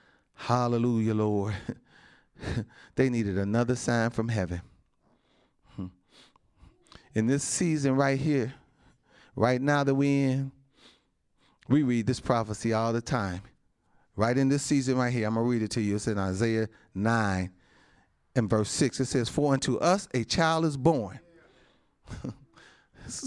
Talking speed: 140 wpm